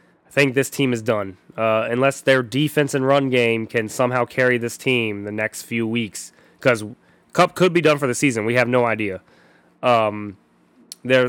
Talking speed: 185 wpm